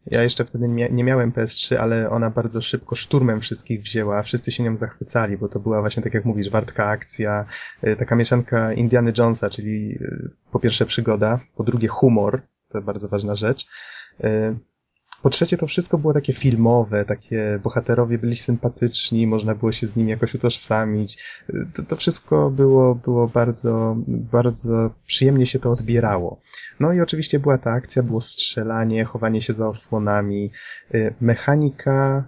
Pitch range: 110-130 Hz